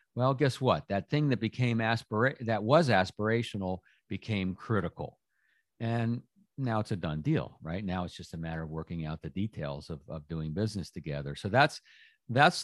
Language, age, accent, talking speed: English, 50-69, American, 175 wpm